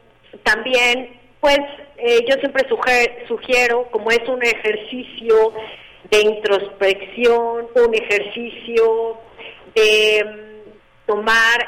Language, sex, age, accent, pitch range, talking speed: Spanish, female, 40-59, Mexican, 200-245 Hz, 80 wpm